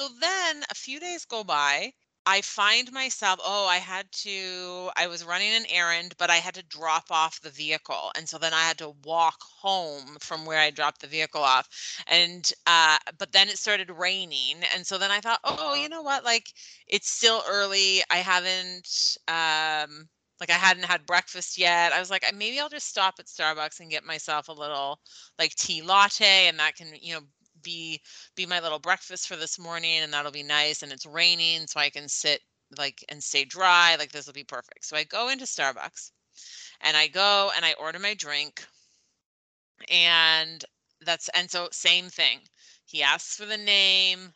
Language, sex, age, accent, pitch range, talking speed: English, female, 30-49, American, 155-195 Hz, 195 wpm